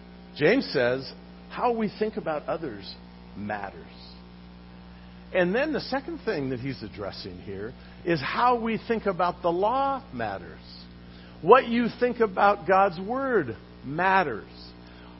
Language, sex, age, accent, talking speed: English, male, 50-69, American, 125 wpm